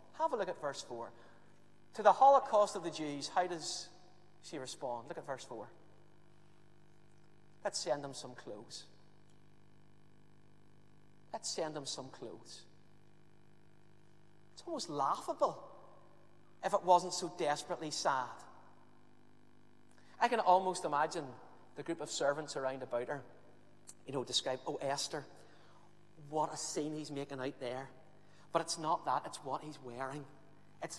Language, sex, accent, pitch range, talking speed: English, male, British, 150-175 Hz, 140 wpm